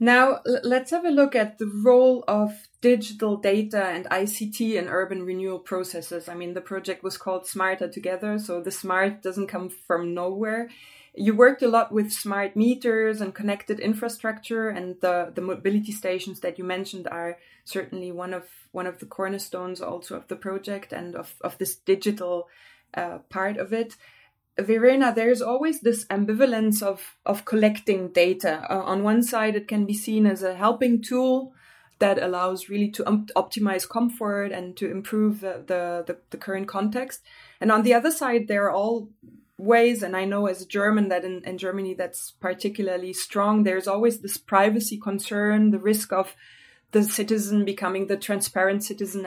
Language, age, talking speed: English, 20-39, 175 wpm